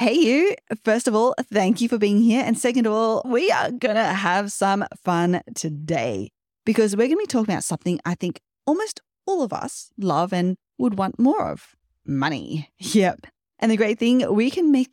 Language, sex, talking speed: English, female, 205 wpm